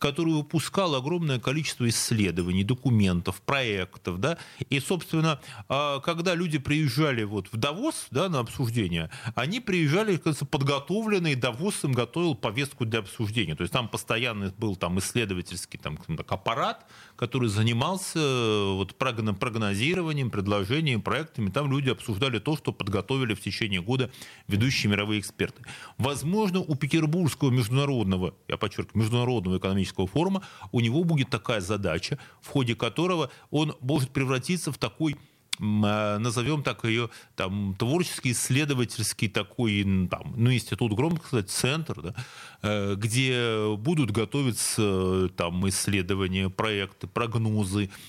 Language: Russian